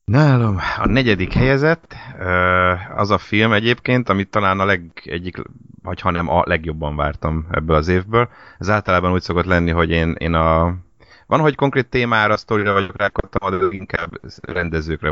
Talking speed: 165 wpm